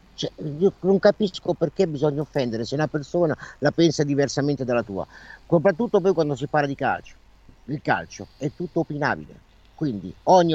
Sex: male